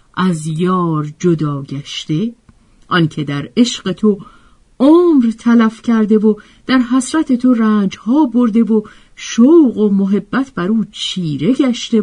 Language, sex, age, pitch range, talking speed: Persian, female, 50-69, 165-235 Hz, 125 wpm